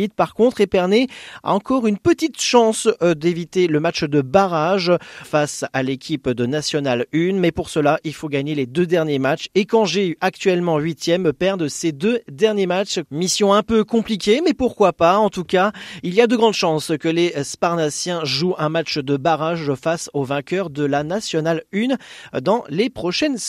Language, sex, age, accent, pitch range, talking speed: French, male, 40-59, French, 150-210 Hz, 190 wpm